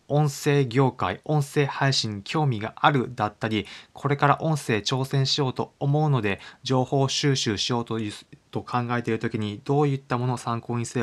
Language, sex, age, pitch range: Japanese, male, 20-39, 110-140 Hz